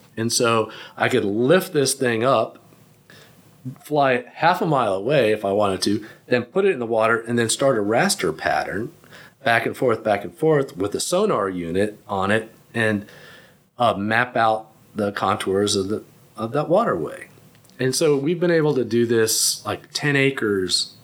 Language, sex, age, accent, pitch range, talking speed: English, male, 40-59, American, 105-140 Hz, 180 wpm